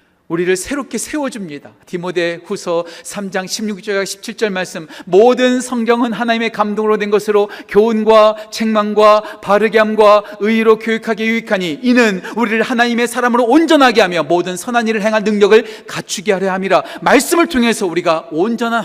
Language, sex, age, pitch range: Korean, male, 40-59, 185-225 Hz